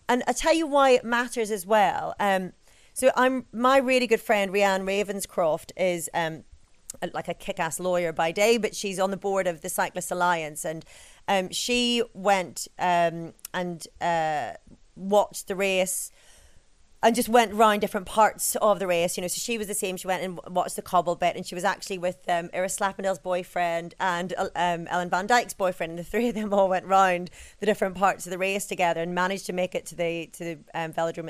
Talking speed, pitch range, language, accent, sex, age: 215 wpm, 175-220 Hz, English, British, female, 30-49